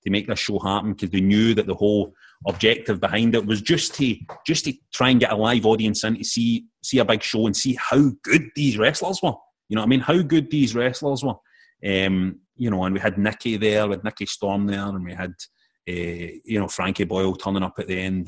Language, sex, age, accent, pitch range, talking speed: English, male, 30-49, British, 100-120 Hz, 245 wpm